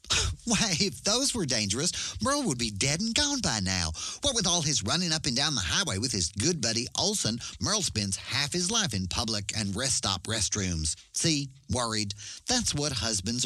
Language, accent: English, American